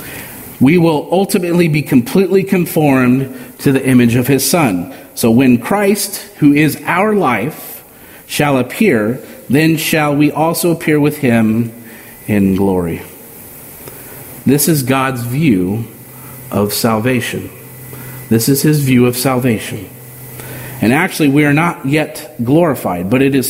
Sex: male